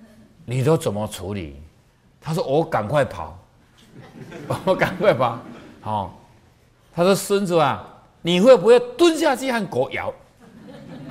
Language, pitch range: Chinese, 120-180 Hz